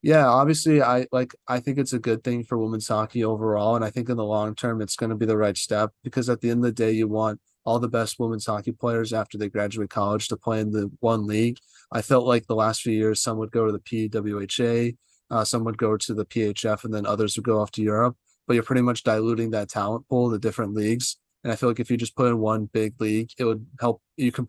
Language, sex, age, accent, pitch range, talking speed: English, male, 20-39, American, 110-120 Hz, 265 wpm